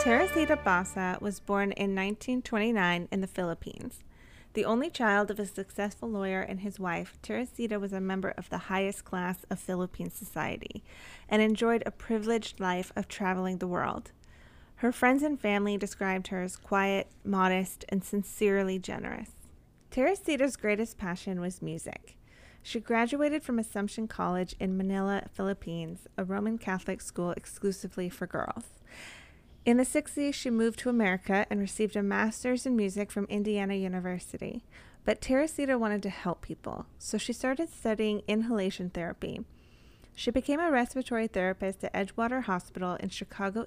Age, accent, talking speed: 20-39, American, 150 wpm